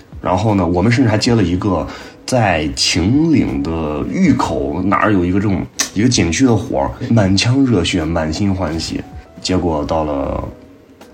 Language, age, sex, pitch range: Chinese, 30-49, male, 95-130 Hz